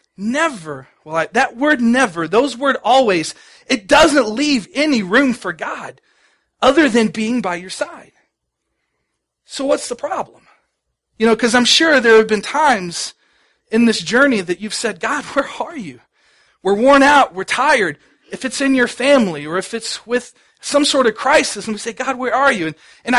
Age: 40-59